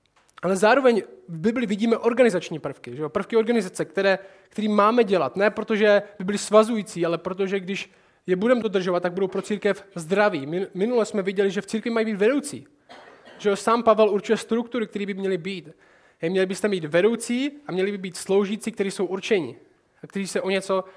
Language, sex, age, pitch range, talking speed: Czech, male, 20-39, 190-225 Hz, 195 wpm